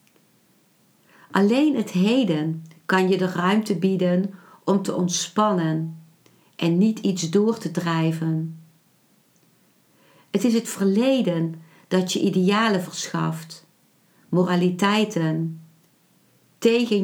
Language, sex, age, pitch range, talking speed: Dutch, female, 60-79, 165-210 Hz, 95 wpm